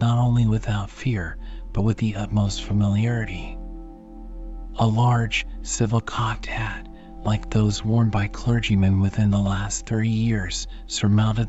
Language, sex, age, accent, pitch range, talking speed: English, male, 40-59, American, 100-115 Hz, 130 wpm